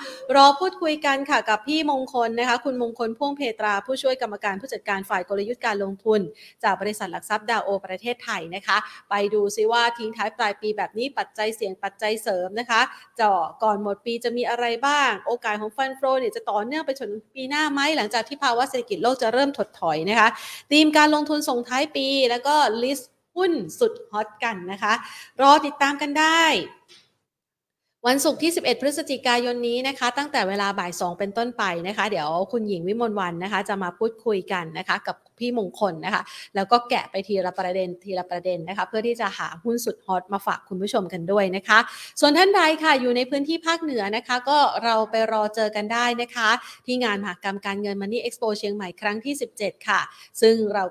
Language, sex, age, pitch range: Thai, female, 30-49, 200-255 Hz